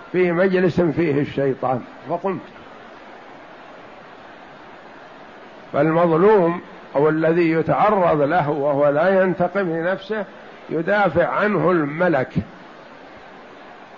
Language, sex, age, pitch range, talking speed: Arabic, male, 50-69, 165-205 Hz, 75 wpm